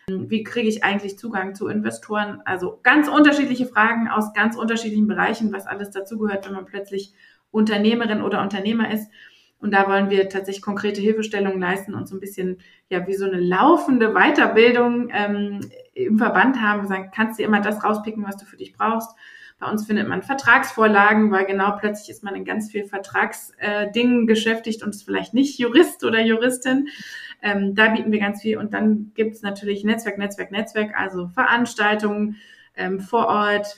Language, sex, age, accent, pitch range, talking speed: German, female, 20-39, German, 195-220 Hz, 180 wpm